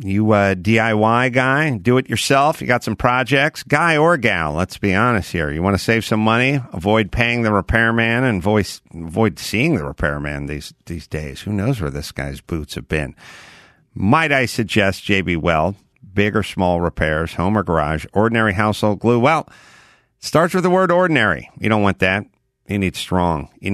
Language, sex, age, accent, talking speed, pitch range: English, male, 50-69, American, 190 wpm, 85-115 Hz